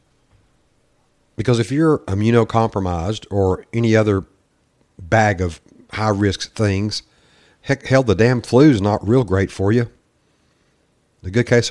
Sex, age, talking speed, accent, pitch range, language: male, 50-69, 130 wpm, American, 90-115 Hz, English